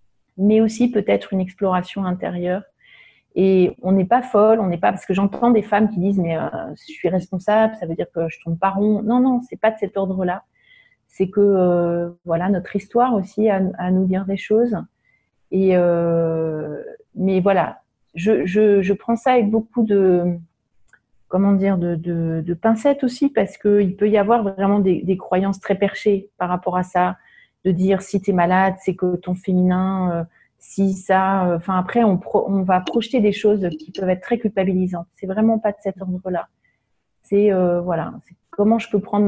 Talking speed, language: 200 wpm, French